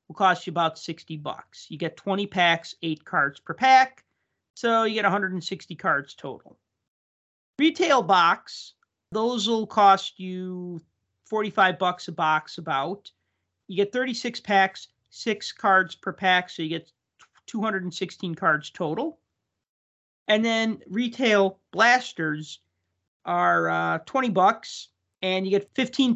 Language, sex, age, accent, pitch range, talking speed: English, male, 40-59, American, 160-210 Hz, 130 wpm